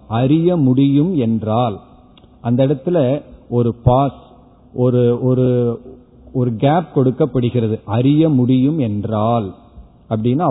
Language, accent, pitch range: Tamil, native, 120-150 Hz